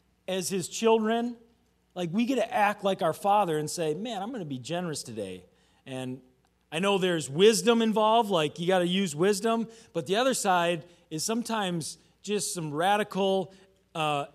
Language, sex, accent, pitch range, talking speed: English, male, American, 155-205 Hz, 175 wpm